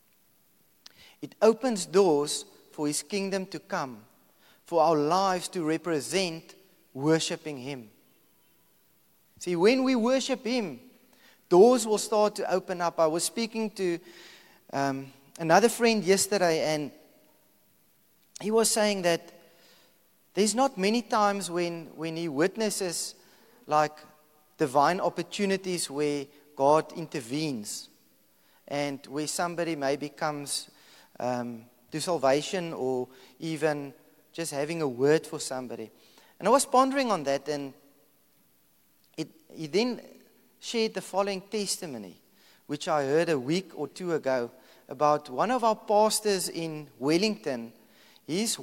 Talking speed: 125 wpm